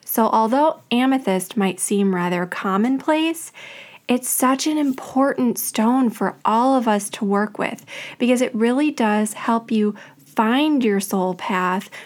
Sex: female